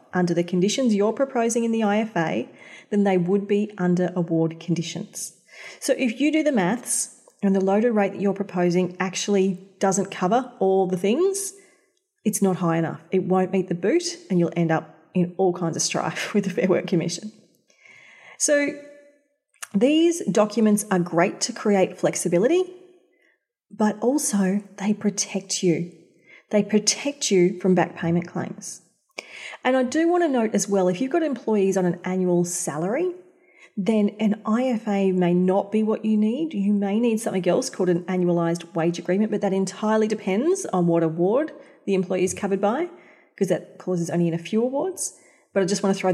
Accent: Australian